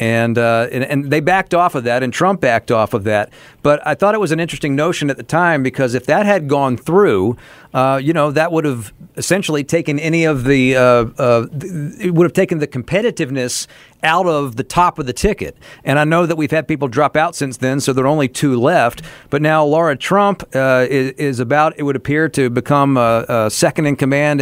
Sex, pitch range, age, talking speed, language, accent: male, 135-165 Hz, 50-69, 225 wpm, English, American